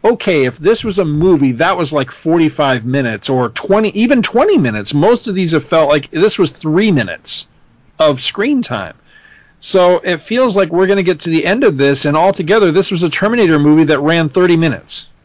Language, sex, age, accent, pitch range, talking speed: English, male, 40-59, American, 145-200 Hz, 210 wpm